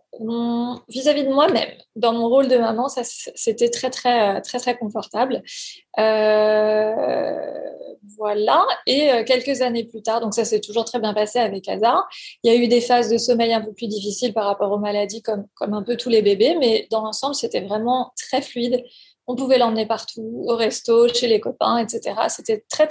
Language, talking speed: French, 195 wpm